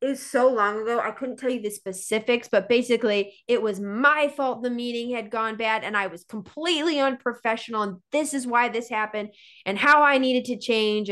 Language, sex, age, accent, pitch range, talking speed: English, female, 20-39, American, 200-245 Hz, 210 wpm